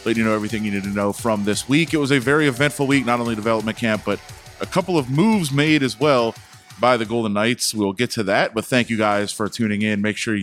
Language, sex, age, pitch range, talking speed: English, male, 30-49, 105-140 Hz, 265 wpm